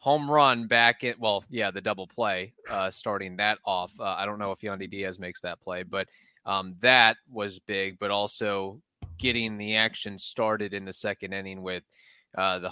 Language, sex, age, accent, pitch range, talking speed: English, male, 20-39, American, 95-120 Hz, 195 wpm